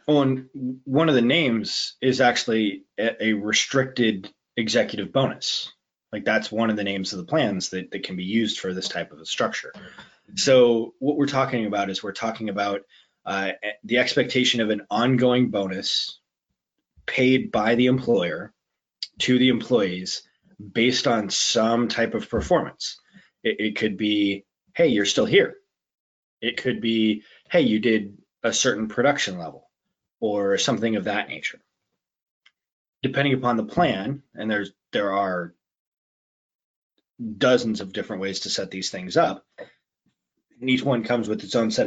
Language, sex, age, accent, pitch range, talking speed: English, male, 20-39, American, 100-125 Hz, 155 wpm